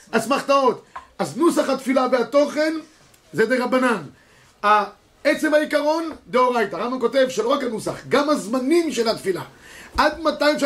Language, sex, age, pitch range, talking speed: Hebrew, male, 30-49, 215-265 Hz, 130 wpm